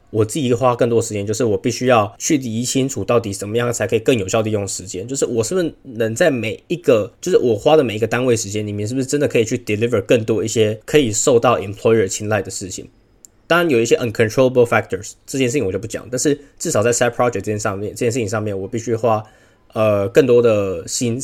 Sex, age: male, 20-39